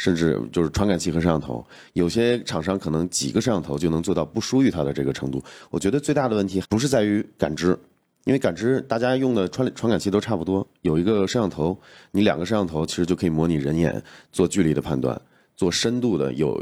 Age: 30-49